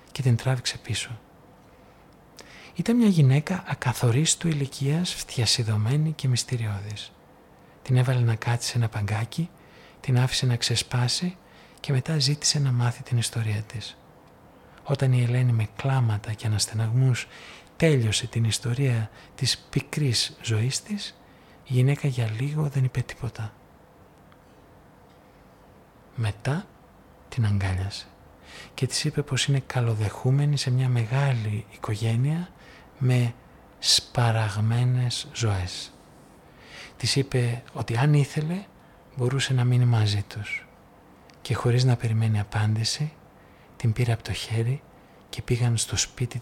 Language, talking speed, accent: Greek, 120 wpm, native